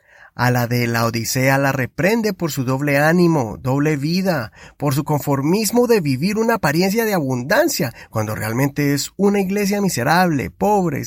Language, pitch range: Spanish, 125-190 Hz